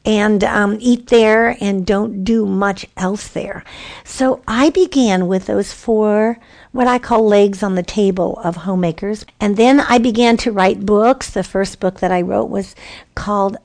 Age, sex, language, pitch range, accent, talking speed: 50-69, female, English, 190-235 Hz, American, 175 wpm